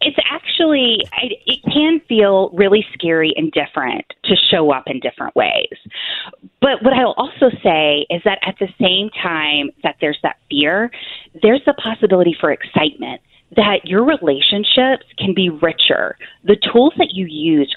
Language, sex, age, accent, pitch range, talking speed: English, female, 30-49, American, 165-250 Hz, 155 wpm